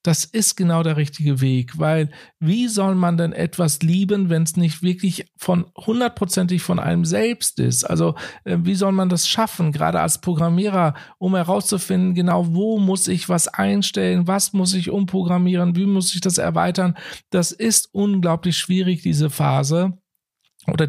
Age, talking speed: 50-69, 160 wpm